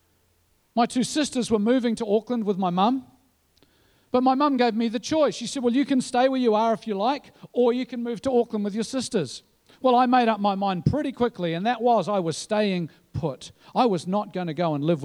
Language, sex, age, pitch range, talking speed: English, male, 50-69, 190-255 Hz, 245 wpm